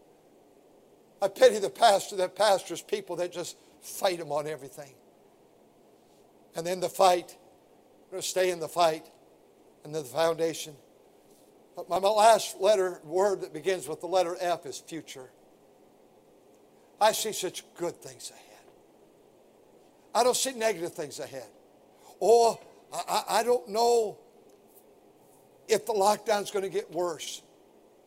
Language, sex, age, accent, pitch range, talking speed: English, male, 60-79, American, 170-220 Hz, 135 wpm